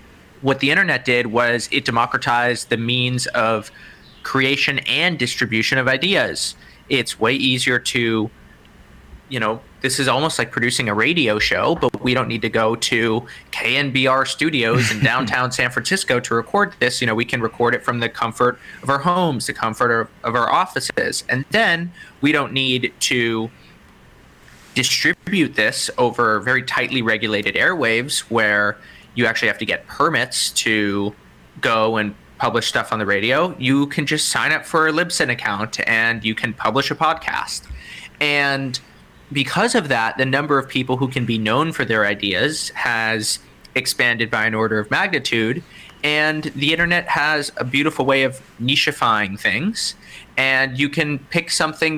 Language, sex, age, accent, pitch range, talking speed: English, male, 20-39, American, 115-145 Hz, 165 wpm